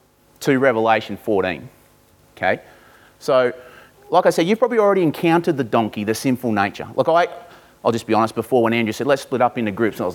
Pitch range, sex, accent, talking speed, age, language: 125-160 Hz, male, Australian, 200 wpm, 30-49, English